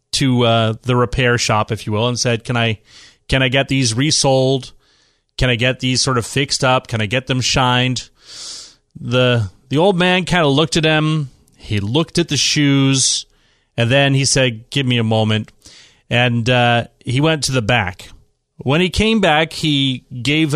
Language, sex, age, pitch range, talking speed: English, male, 30-49, 115-150 Hz, 190 wpm